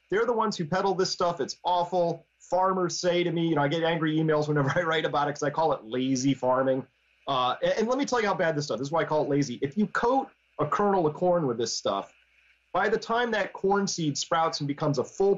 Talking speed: 270 wpm